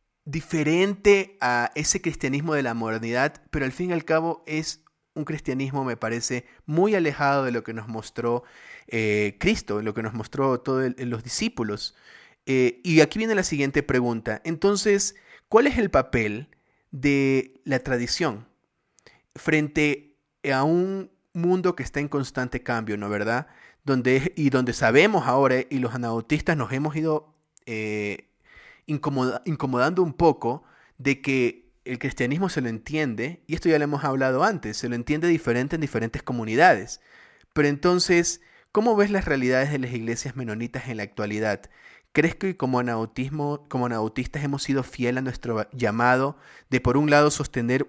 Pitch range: 120-155 Hz